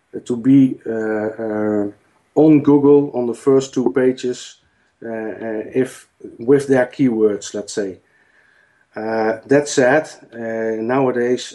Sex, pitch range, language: male, 110-130 Hz, English